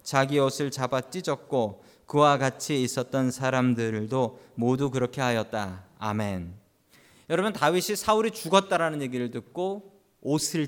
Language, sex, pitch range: Korean, male, 135-215 Hz